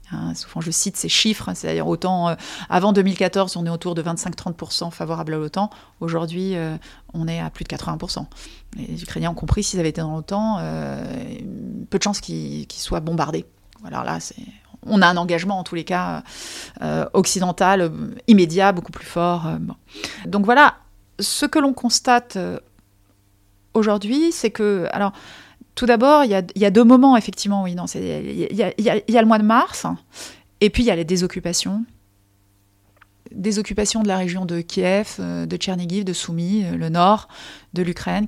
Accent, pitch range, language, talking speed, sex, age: French, 160-210 Hz, French, 180 wpm, female, 30-49